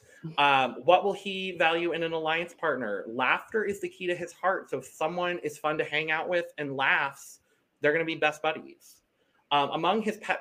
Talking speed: 215 wpm